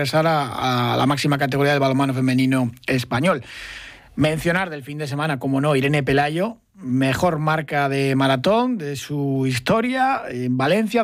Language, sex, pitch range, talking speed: Spanish, male, 150-200 Hz, 145 wpm